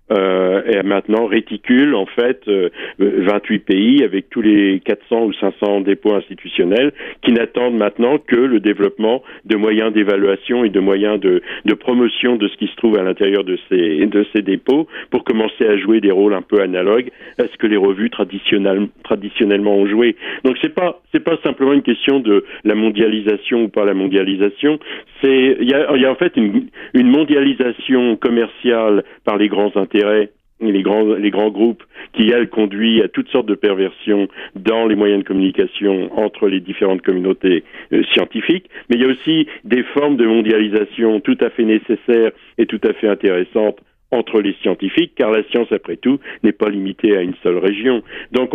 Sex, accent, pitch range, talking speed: male, French, 100-130 Hz, 185 wpm